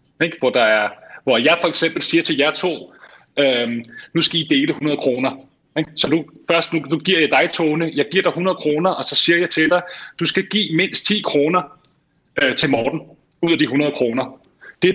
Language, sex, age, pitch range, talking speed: Danish, male, 30-49, 150-185 Hz, 220 wpm